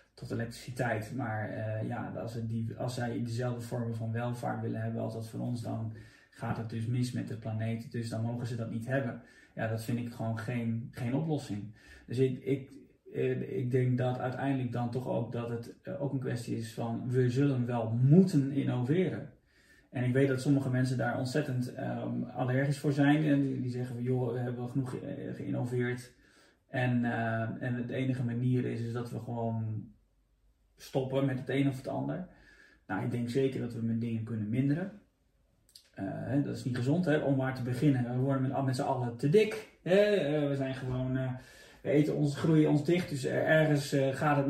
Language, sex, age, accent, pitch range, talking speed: Dutch, male, 20-39, Dutch, 115-135 Hz, 190 wpm